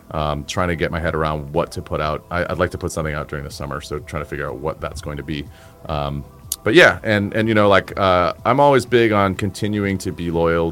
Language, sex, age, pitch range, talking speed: English, male, 30-49, 80-100 Hz, 270 wpm